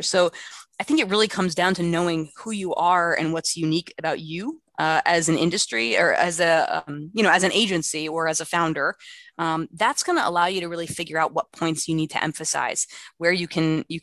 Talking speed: 230 wpm